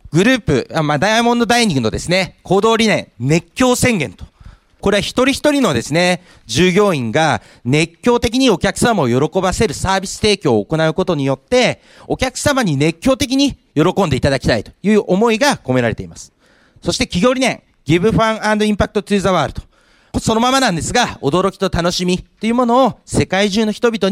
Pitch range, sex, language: 145-230 Hz, male, Japanese